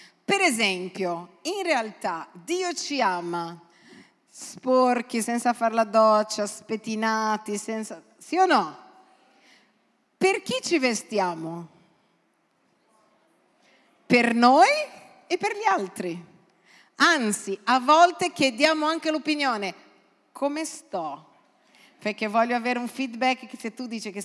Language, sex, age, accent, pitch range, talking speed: Italian, female, 40-59, native, 200-285 Hz, 110 wpm